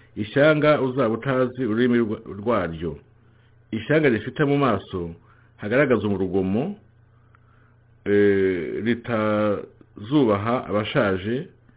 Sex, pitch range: male, 105-130 Hz